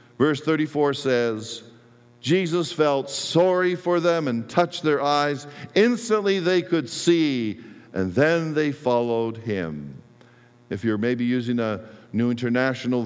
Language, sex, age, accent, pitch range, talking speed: English, male, 50-69, American, 110-125 Hz, 130 wpm